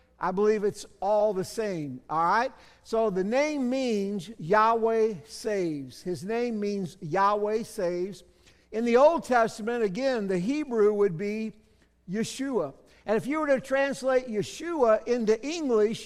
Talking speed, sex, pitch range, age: 140 wpm, male, 195-240 Hz, 50-69